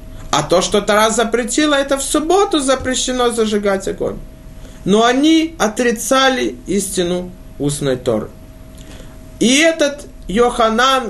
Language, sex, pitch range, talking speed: Russian, male, 165-245 Hz, 110 wpm